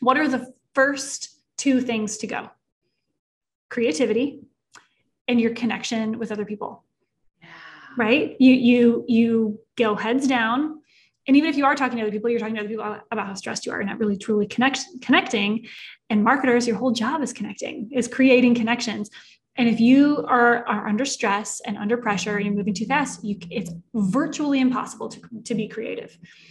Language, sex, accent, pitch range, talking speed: English, female, American, 215-260 Hz, 180 wpm